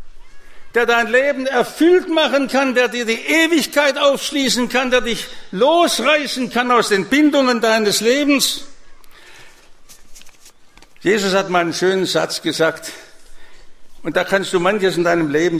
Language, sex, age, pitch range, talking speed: English, male, 60-79, 190-270 Hz, 140 wpm